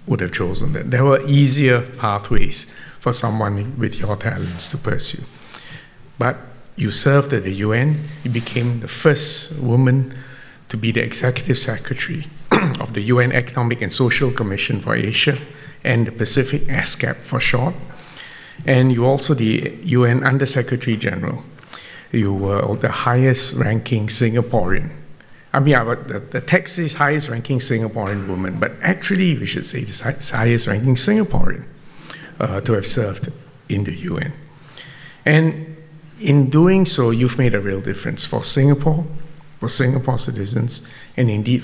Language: English